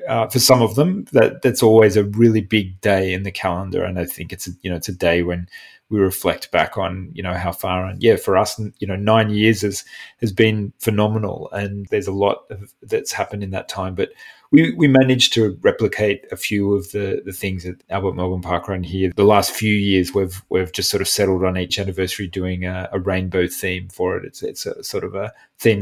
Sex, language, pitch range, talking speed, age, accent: male, English, 95-110 Hz, 235 wpm, 30-49, Australian